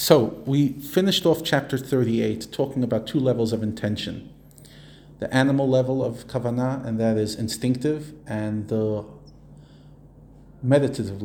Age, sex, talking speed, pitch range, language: 40-59, male, 130 wpm, 110-135 Hz, English